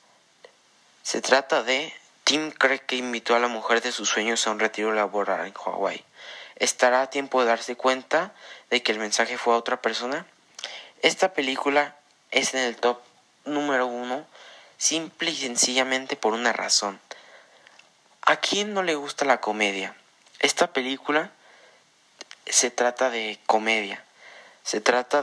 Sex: male